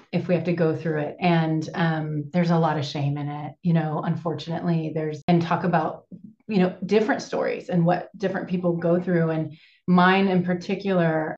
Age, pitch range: 30-49, 165-185 Hz